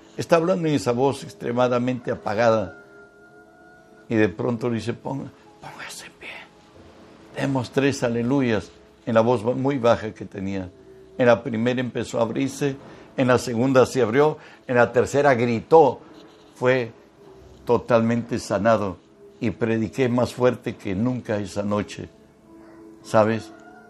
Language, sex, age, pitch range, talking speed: Spanish, male, 60-79, 110-130 Hz, 130 wpm